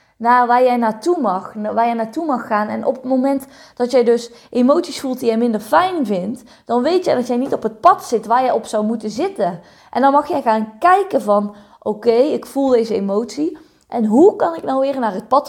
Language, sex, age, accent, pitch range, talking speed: Dutch, female, 20-39, Dutch, 210-255 Hz, 230 wpm